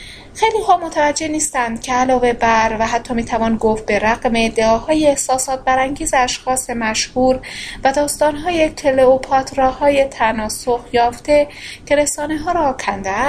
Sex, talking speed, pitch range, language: female, 115 wpm, 225-290 Hz, Persian